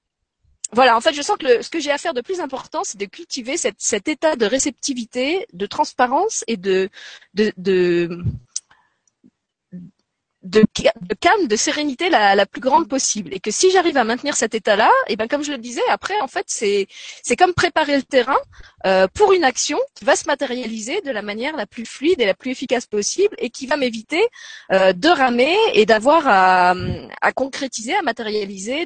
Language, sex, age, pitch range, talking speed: French, female, 30-49, 200-295 Hz, 200 wpm